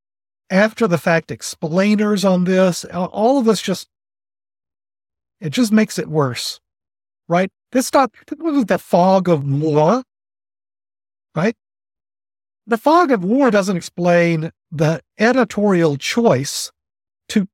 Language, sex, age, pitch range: English, male, 50-69, 130-215 Hz